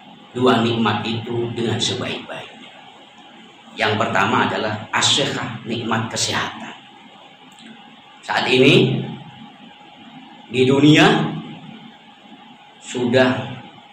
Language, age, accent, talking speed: Indonesian, 40-59, native, 70 wpm